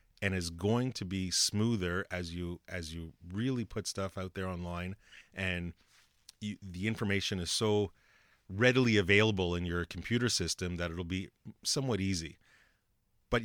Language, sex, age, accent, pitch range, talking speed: English, male, 30-49, American, 90-115 Hz, 150 wpm